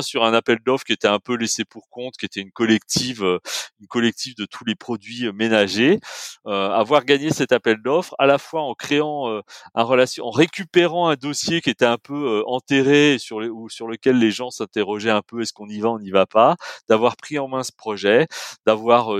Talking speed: 220 wpm